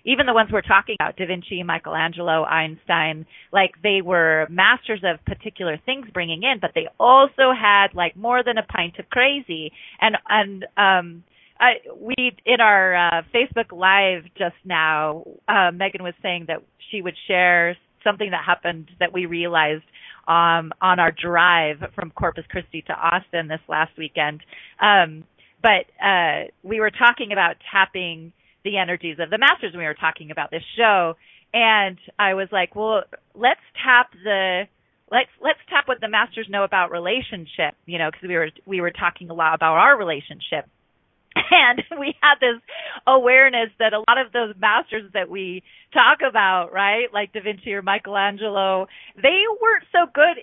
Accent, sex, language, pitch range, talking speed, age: American, female, English, 170-235 Hz, 170 wpm, 30-49